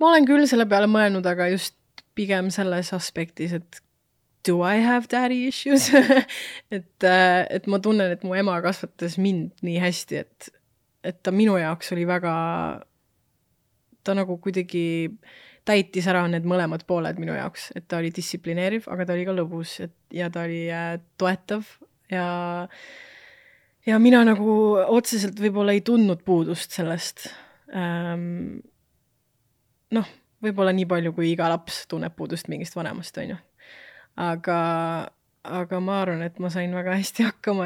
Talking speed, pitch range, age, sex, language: 145 wpm, 170-195 Hz, 20-39, female, English